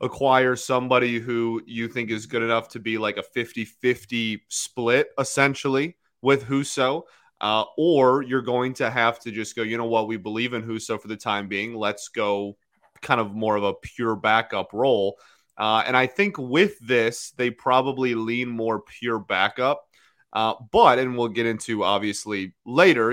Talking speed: 180 wpm